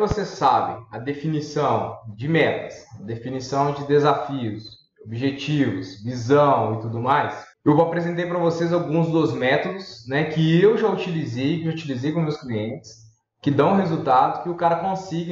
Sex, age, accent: male, 20-39, Brazilian